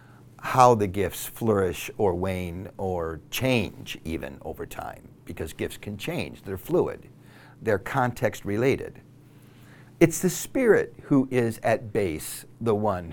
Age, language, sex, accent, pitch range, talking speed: 60-79, English, male, American, 100-130 Hz, 135 wpm